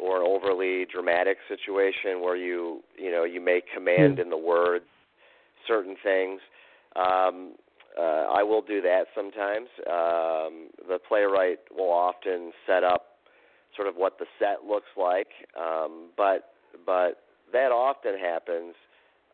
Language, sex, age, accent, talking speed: English, male, 40-59, American, 135 wpm